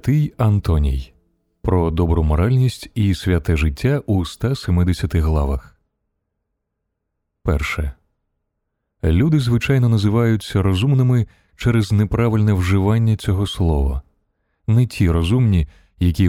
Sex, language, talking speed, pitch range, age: male, Ukrainian, 90 wpm, 85-105 Hz, 30-49